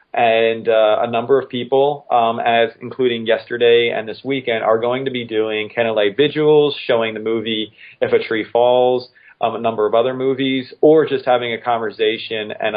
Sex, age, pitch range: male, 30-49, 105-130 Hz